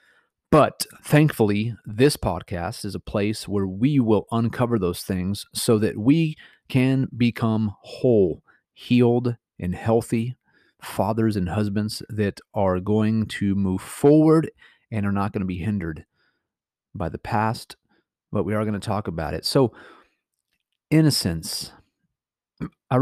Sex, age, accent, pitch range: male, 30-49, American, 95-115 Hz